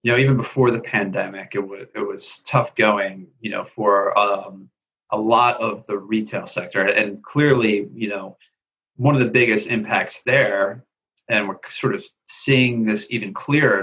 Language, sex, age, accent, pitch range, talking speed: English, male, 30-49, American, 105-125 Hz, 175 wpm